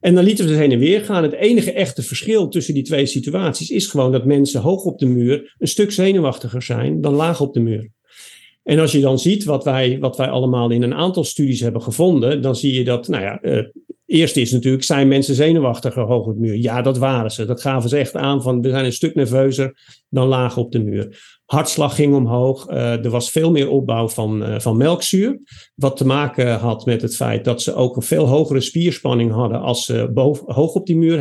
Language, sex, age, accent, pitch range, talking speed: Dutch, male, 50-69, Dutch, 120-150 Hz, 230 wpm